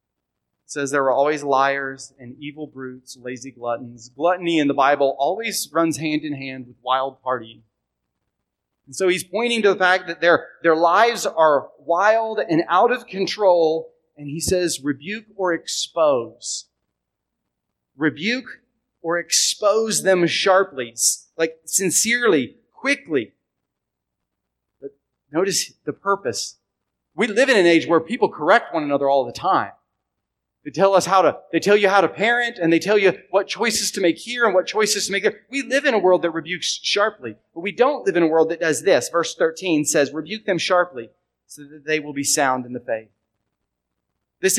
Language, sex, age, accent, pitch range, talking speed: English, male, 30-49, American, 145-200 Hz, 175 wpm